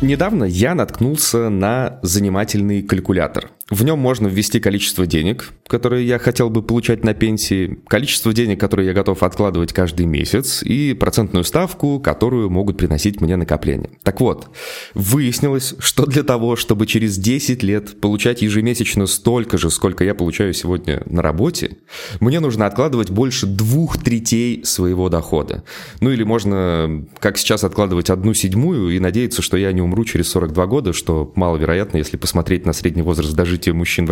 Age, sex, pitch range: 20-39, male, 90-115 Hz